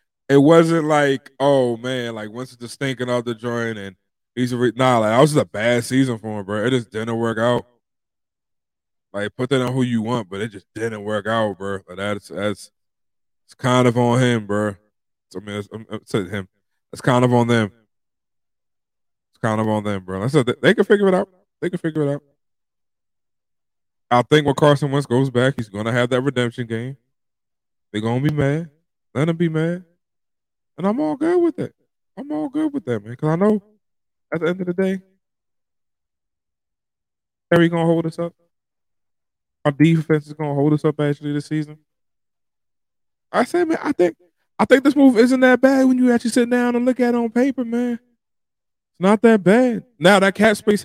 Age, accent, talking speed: 20-39, American, 205 wpm